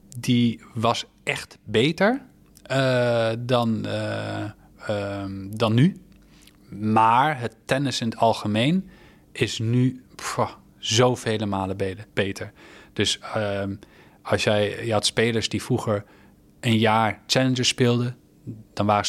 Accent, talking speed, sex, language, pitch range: Dutch, 115 wpm, male, Dutch, 100-120 Hz